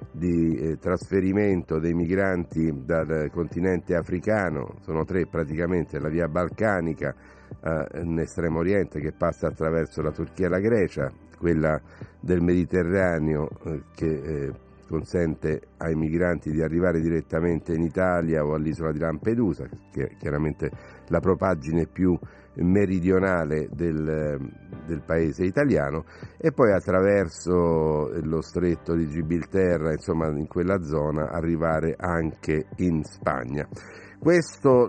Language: Italian